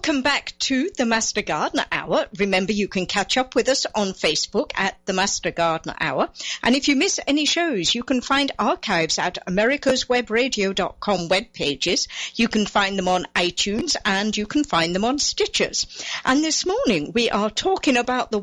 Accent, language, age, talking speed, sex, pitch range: British, English, 50-69, 180 wpm, female, 195-275 Hz